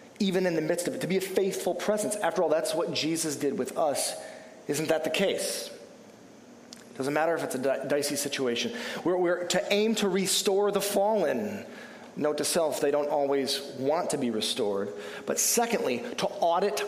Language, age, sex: English, 30-49, male